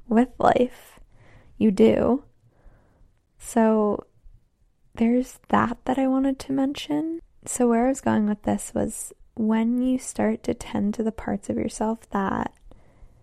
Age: 10-29